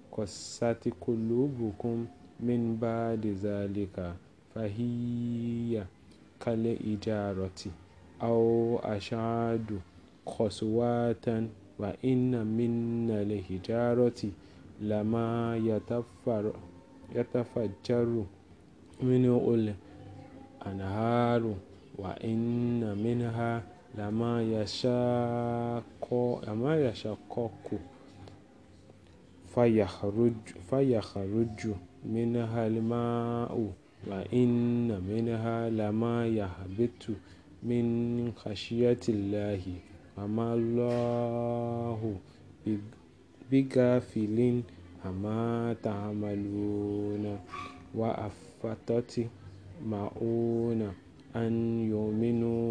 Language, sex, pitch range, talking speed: English, male, 100-120 Hz, 55 wpm